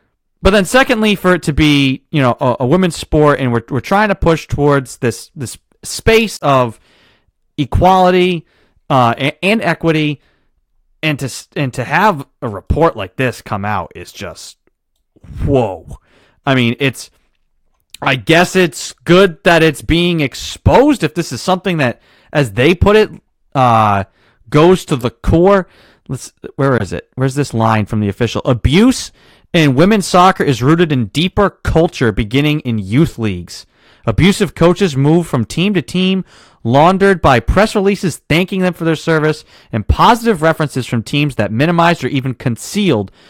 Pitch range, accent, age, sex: 120-170 Hz, American, 30-49, male